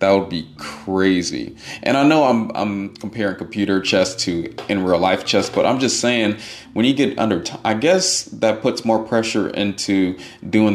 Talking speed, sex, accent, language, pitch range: 190 wpm, male, American, English, 90-120 Hz